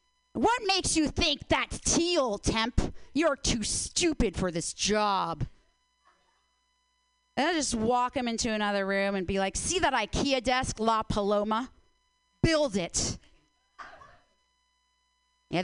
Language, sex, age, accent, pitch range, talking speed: English, female, 30-49, American, 165-265 Hz, 125 wpm